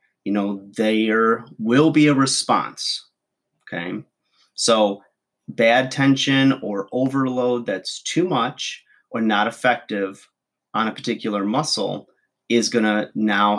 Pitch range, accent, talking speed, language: 100-125 Hz, American, 115 wpm, English